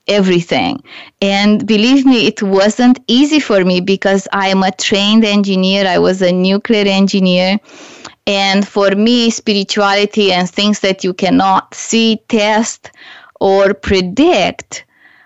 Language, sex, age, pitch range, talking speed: English, female, 20-39, 190-225 Hz, 130 wpm